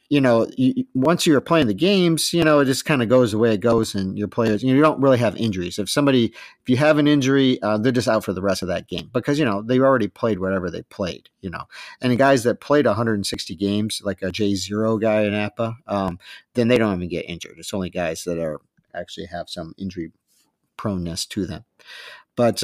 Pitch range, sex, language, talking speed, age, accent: 100-130 Hz, male, English, 240 wpm, 50-69, American